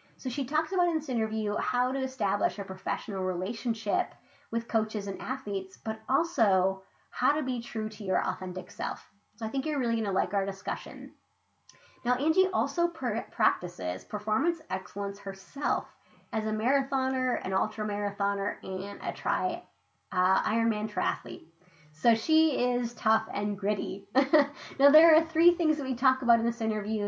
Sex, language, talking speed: female, English, 165 wpm